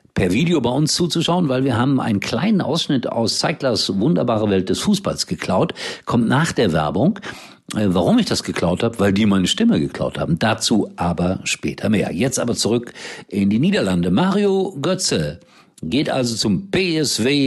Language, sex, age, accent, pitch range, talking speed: German, male, 50-69, German, 100-140 Hz, 170 wpm